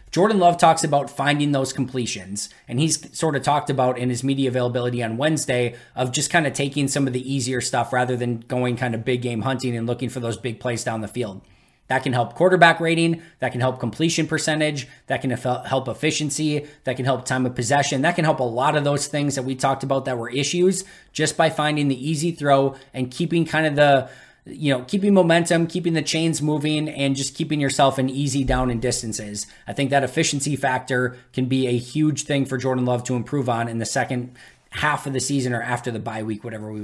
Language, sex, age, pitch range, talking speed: English, male, 20-39, 125-150 Hz, 225 wpm